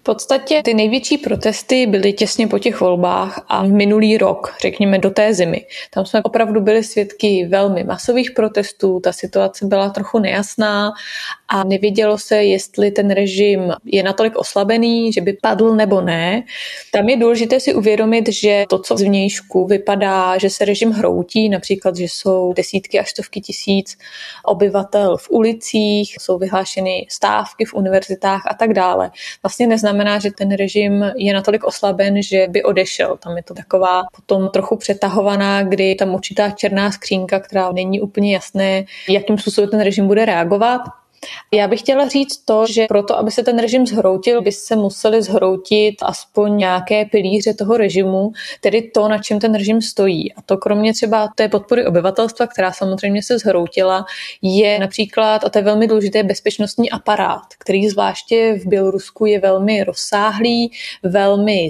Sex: female